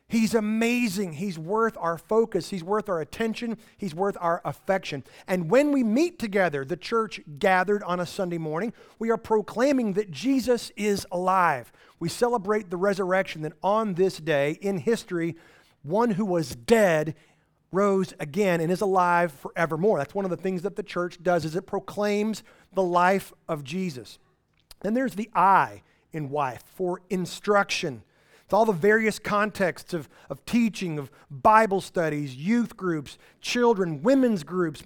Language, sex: English, male